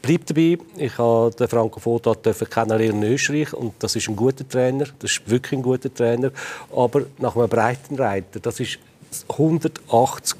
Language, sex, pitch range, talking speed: German, male, 120-145 Hz, 165 wpm